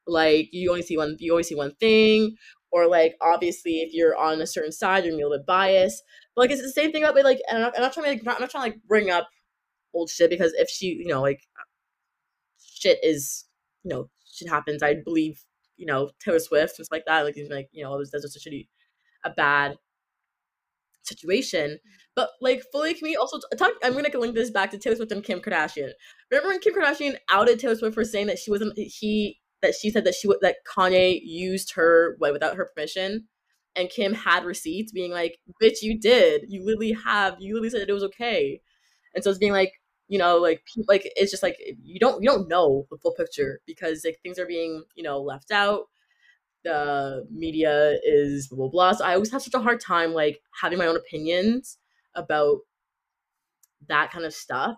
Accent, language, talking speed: American, English, 220 wpm